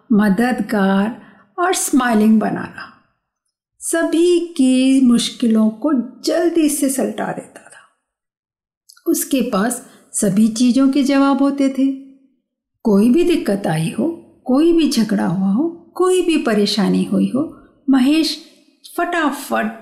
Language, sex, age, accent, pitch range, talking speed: Hindi, female, 50-69, native, 220-305 Hz, 115 wpm